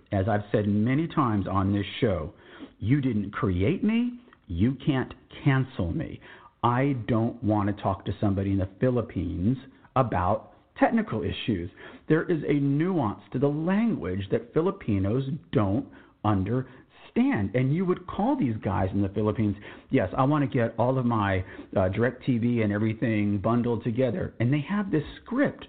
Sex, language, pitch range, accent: male, English, 100-140 Hz, American